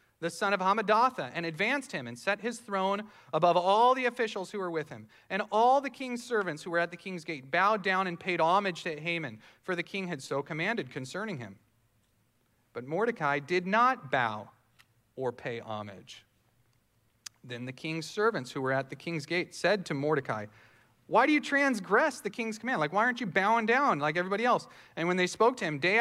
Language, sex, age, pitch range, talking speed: English, male, 40-59, 145-205 Hz, 205 wpm